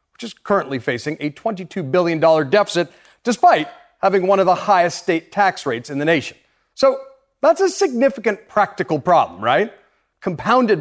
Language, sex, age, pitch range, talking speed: English, male, 40-59, 155-220 Hz, 155 wpm